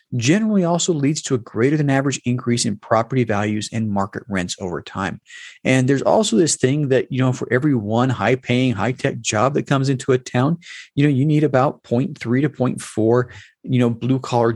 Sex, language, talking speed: male, English, 195 wpm